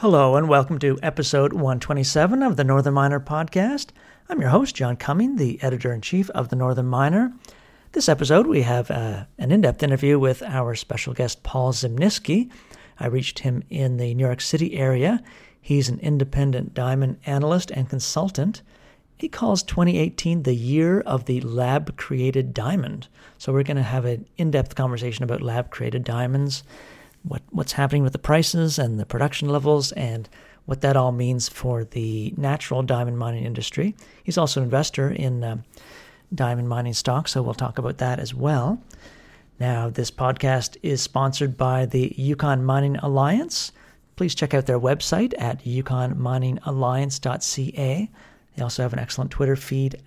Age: 50-69